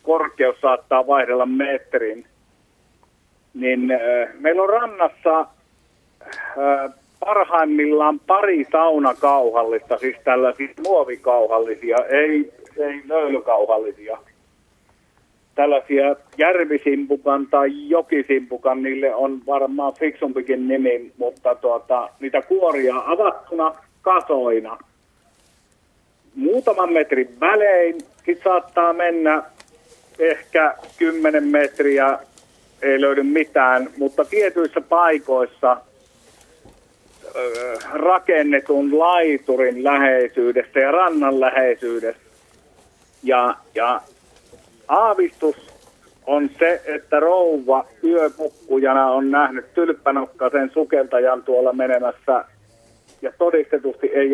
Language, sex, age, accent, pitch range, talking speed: Finnish, male, 50-69, native, 130-165 Hz, 75 wpm